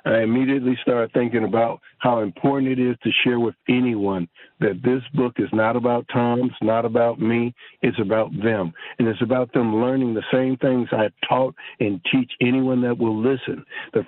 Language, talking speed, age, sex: English, 190 wpm, 60-79, male